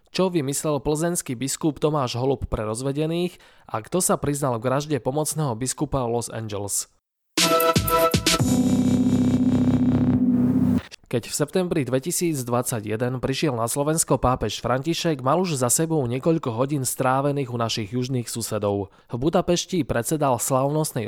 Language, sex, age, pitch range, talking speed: Slovak, male, 20-39, 120-155 Hz, 115 wpm